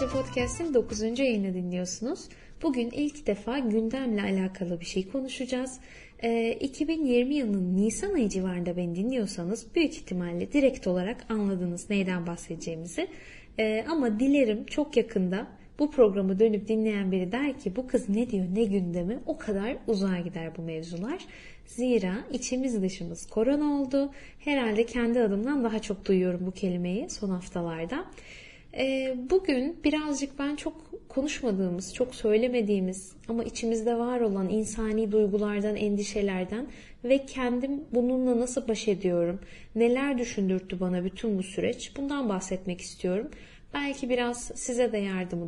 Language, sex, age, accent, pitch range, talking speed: Turkish, female, 10-29, native, 190-255 Hz, 135 wpm